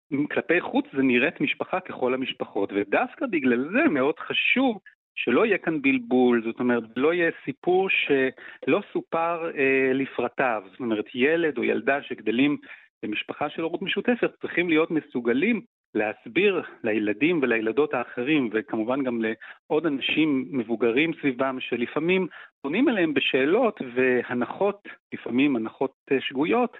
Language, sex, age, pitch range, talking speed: Hebrew, male, 40-59, 120-170 Hz, 125 wpm